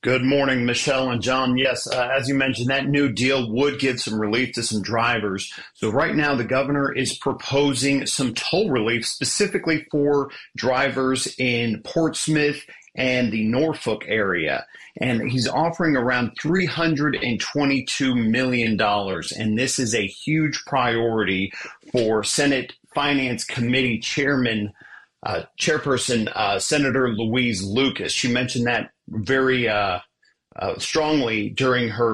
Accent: American